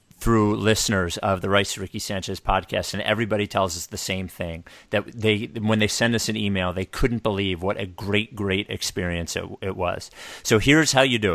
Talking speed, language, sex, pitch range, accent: 205 wpm, English, male, 95-115 Hz, American